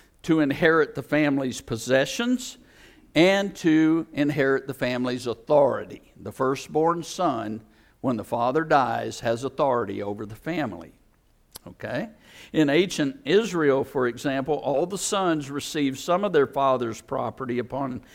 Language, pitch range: English, 130-170 Hz